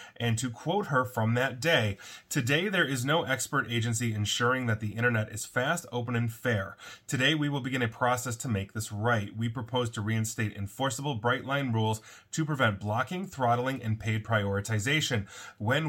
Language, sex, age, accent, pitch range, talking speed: English, male, 30-49, American, 110-130 Hz, 180 wpm